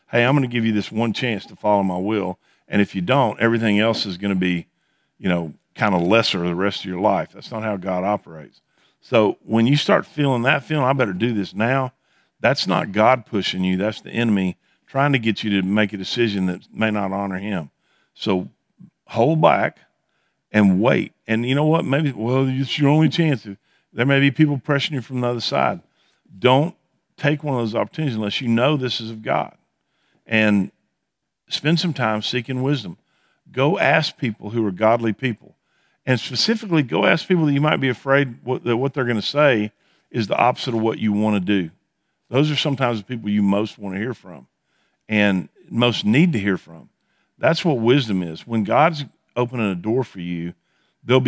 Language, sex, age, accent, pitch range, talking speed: English, male, 50-69, American, 105-135 Hz, 205 wpm